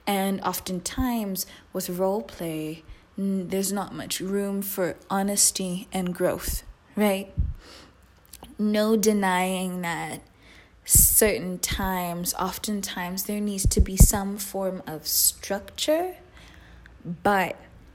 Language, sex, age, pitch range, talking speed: English, female, 20-39, 170-200 Hz, 95 wpm